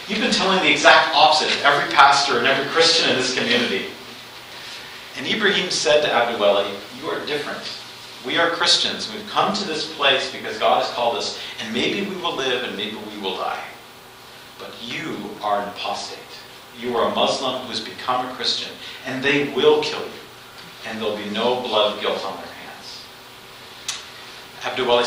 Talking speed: 185 wpm